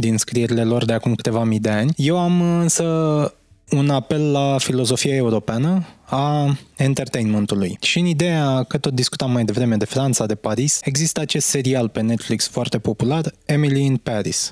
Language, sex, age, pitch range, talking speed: Romanian, male, 20-39, 120-150 Hz, 170 wpm